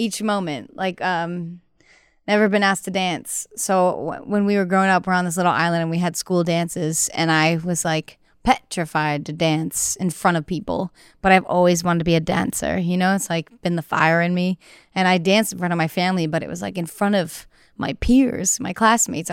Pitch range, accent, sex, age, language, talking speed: 170-200 Hz, American, female, 30-49, English, 225 wpm